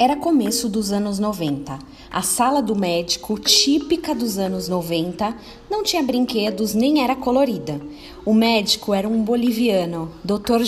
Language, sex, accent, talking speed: Portuguese, female, Brazilian, 140 wpm